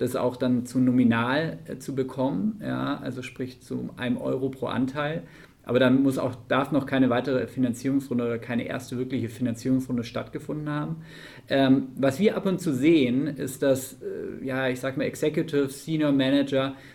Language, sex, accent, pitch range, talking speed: German, male, German, 125-145 Hz, 175 wpm